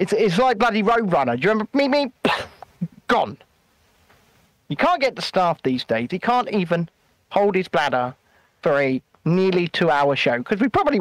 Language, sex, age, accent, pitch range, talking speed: English, male, 40-59, British, 145-215 Hz, 175 wpm